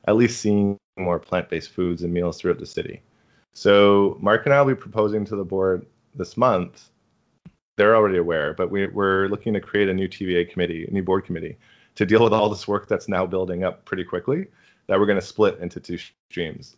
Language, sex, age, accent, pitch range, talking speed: English, male, 20-39, American, 90-105 Hz, 205 wpm